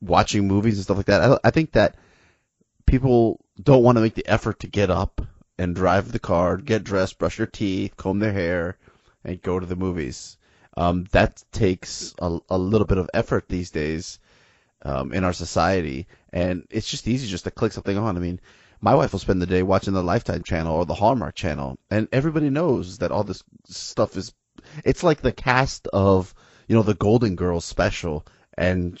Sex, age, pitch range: male, 30-49, 90-115 Hz